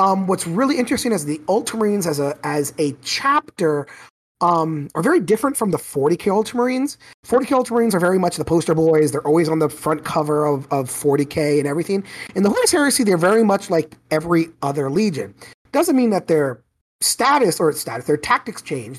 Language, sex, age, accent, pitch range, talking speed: English, male, 30-49, American, 150-205 Hz, 195 wpm